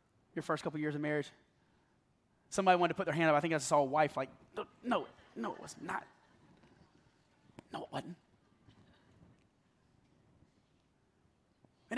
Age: 30-49